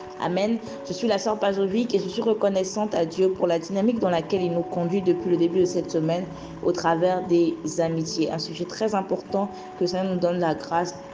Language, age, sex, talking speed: French, 20-39, female, 215 wpm